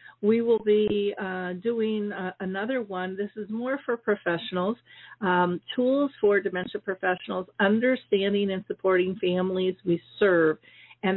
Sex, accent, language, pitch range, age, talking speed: female, American, English, 185-230 Hz, 40-59, 135 wpm